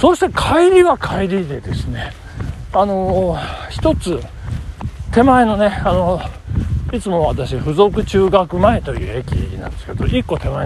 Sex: male